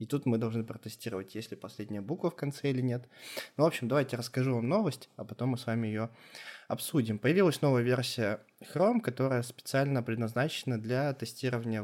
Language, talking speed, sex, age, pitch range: Russian, 175 wpm, male, 20-39, 115-140 Hz